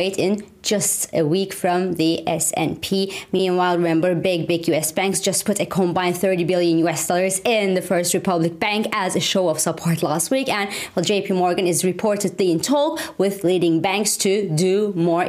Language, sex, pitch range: English, female, 190-245 Hz